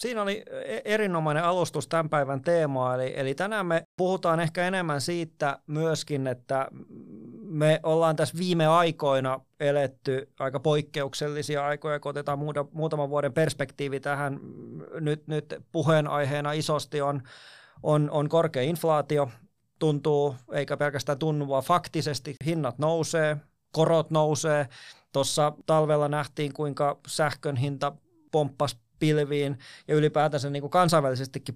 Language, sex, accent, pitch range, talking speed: Finnish, male, native, 145-165 Hz, 120 wpm